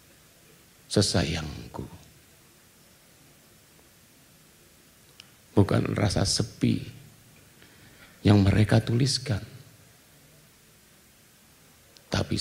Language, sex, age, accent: Indonesian, male, 50-69, native